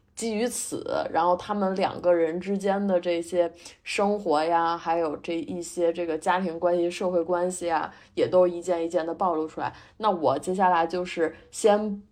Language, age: Chinese, 20-39